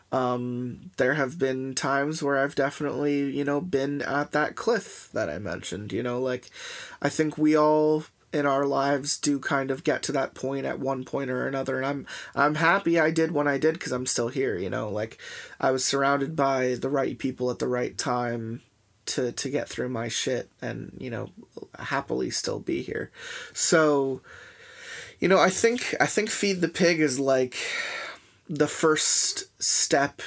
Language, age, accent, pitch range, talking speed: English, 20-39, American, 130-155 Hz, 185 wpm